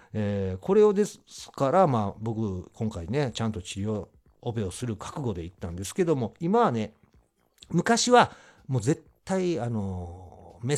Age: 50-69